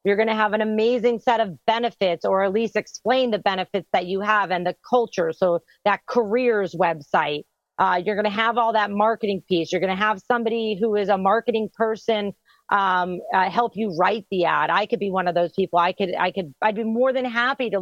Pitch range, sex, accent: 185-230 Hz, female, American